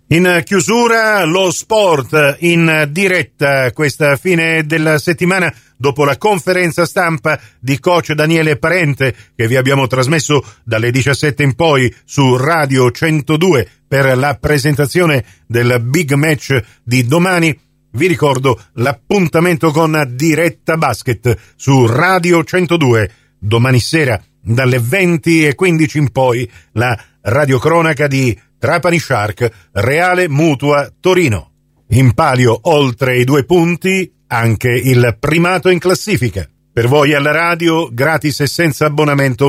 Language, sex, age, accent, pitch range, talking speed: Italian, male, 50-69, native, 125-175 Hz, 120 wpm